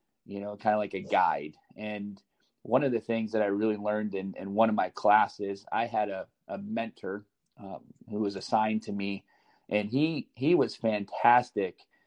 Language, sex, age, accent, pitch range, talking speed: English, male, 30-49, American, 105-125 Hz, 190 wpm